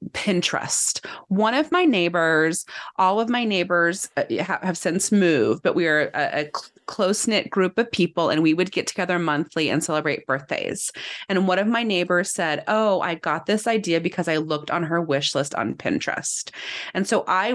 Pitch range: 155-195 Hz